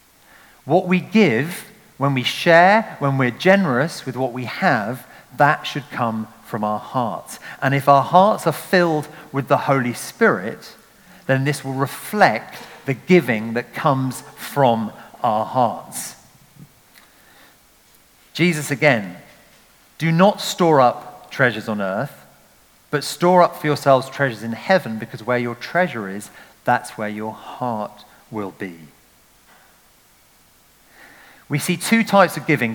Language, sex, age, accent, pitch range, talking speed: English, male, 40-59, British, 125-170 Hz, 135 wpm